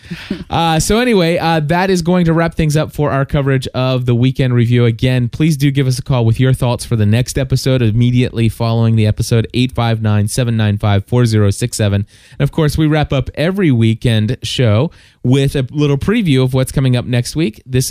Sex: male